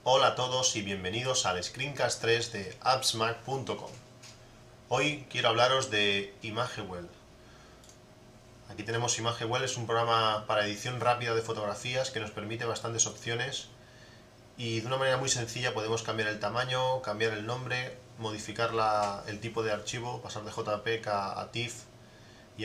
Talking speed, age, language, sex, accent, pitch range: 145 wpm, 30-49, Spanish, male, Spanish, 105-125 Hz